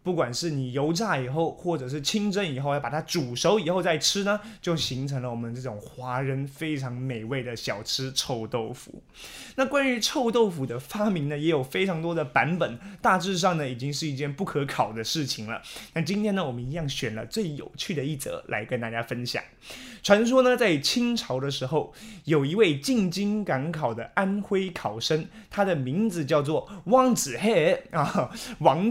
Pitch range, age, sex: 135-200 Hz, 20-39, male